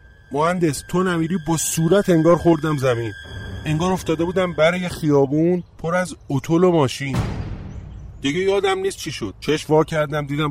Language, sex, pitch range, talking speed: Persian, male, 120-160 Hz, 155 wpm